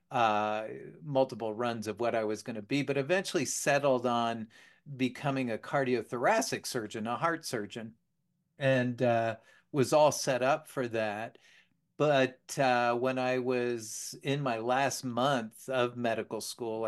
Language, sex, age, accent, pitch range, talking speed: English, male, 40-59, American, 115-140 Hz, 145 wpm